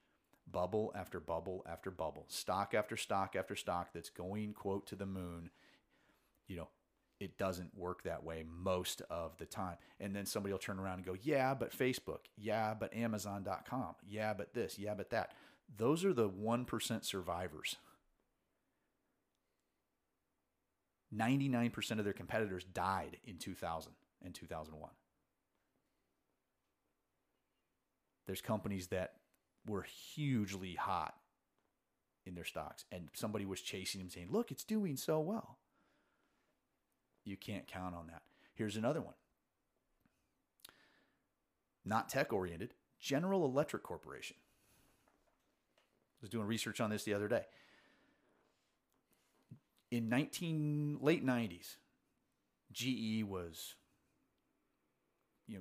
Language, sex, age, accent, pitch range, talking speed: English, male, 40-59, American, 90-115 Hz, 120 wpm